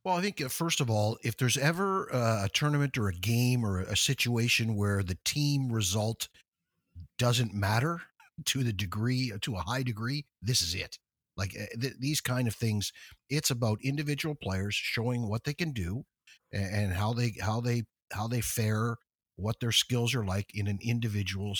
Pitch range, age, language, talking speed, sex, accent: 100-125 Hz, 50-69, English, 175 wpm, male, American